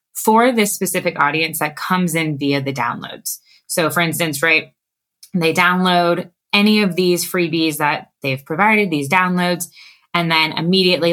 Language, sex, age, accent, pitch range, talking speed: English, female, 20-39, American, 150-185 Hz, 150 wpm